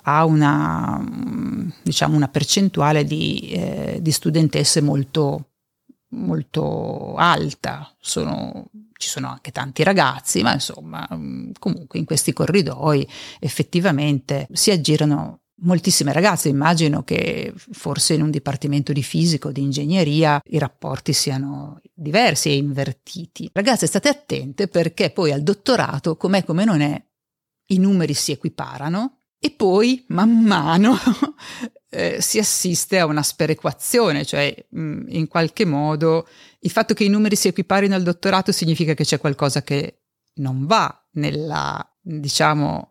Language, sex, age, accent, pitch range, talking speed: Italian, female, 50-69, native, 150-195 Hz, 130 wpm